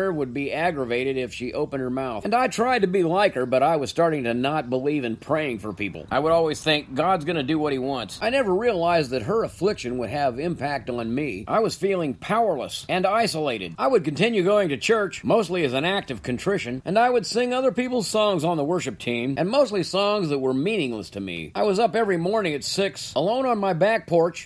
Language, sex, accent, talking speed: English, male, American, 235 wpm